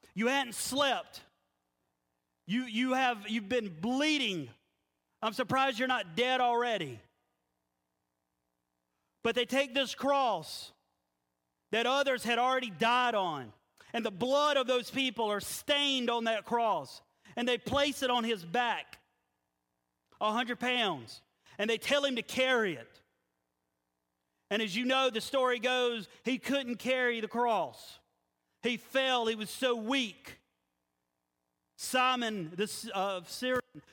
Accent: American